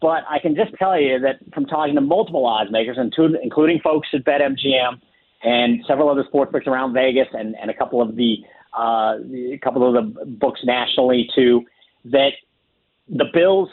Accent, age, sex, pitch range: American, 40-59, male, 125-150 Hz